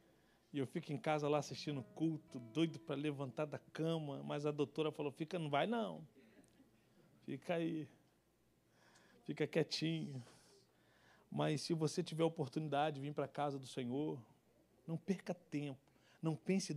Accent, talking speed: Brazilian, 145 wpm